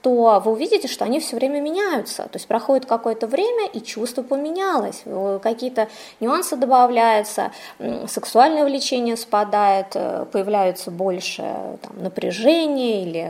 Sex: female